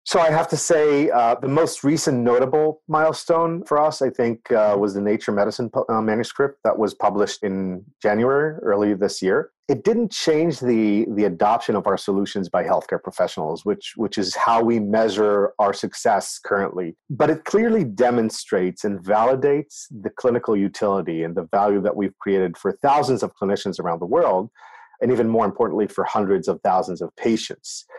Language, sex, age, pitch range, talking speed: English, male, 40-59, 100-155 Hz, 175 wpm